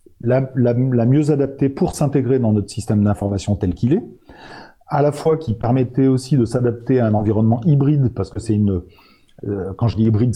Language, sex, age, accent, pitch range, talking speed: French, male, 40-59, French, 95-120 Hz, 205 wpm